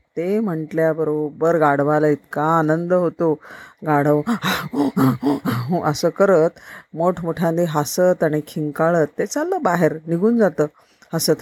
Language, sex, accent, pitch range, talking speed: Marathi, female, native, 150-200 Hz, 100 wpm